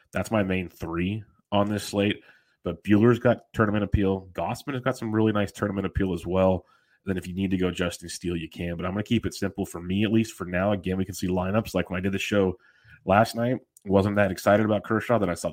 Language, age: English, 30-49